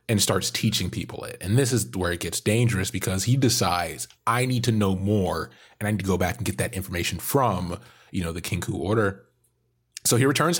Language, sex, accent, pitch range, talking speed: English, male, American, 90-110 Hz, 220 wpm